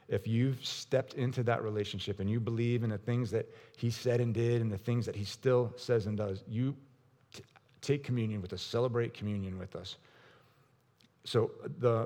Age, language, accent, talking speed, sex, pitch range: 30-49, English, American, 190 wpm, male, 105-125 Hz